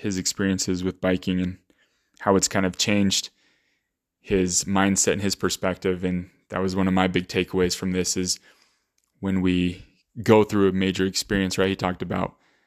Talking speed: 175 wpm